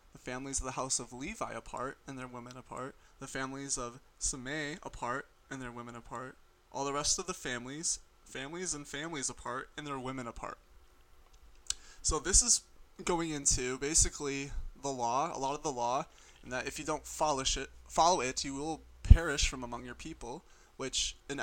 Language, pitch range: English, 120-145 Hz